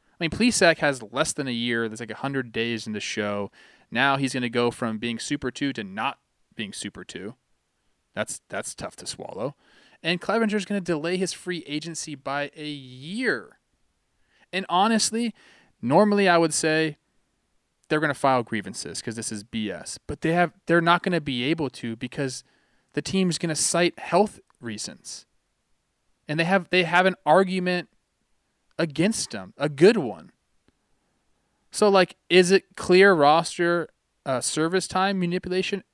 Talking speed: 160 wpm